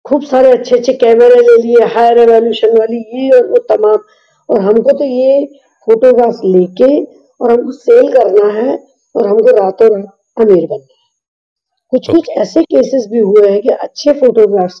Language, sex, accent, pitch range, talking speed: Hindi, female, native, 210-285 Hz, 170 wpm